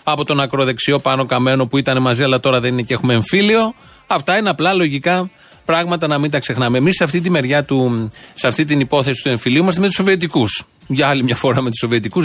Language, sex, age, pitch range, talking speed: Greek, male, 40-59, 125-165 Hz, 210 wpm